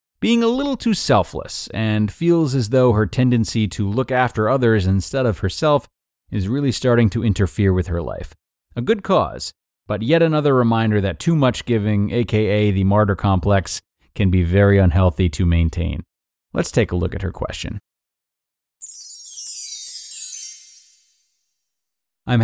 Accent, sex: American, male